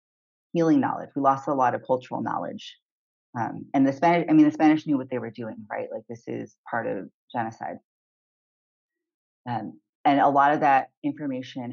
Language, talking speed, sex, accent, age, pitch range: English, 185 wpm, female, American, 30-49, 120-160 Hz